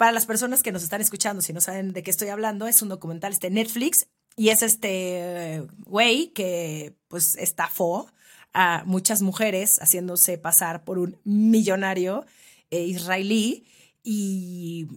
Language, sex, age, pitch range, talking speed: Spanish, female, 30-49, 180-245 Hz, 145 wpm